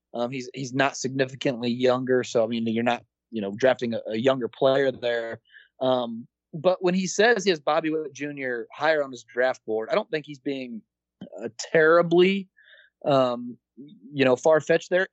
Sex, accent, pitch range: male, American, 120-155 Hz